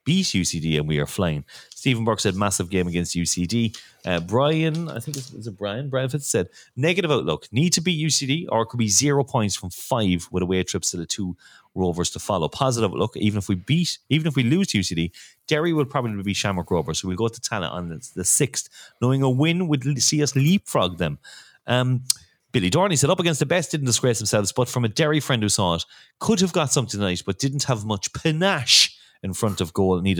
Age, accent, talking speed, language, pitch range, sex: 30-49, Irish, 230 wpm, English, 90-140 Hz, male